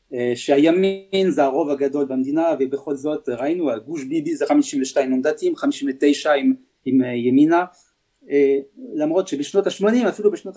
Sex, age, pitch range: male, 30-49, 140-230 Hz